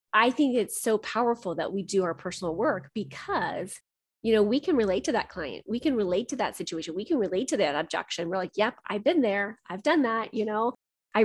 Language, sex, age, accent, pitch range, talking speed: English, female, 20-39, American, 185-220 Hz, 235 wpm